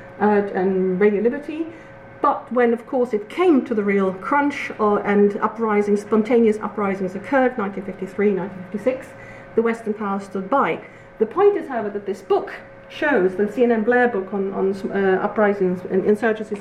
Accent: British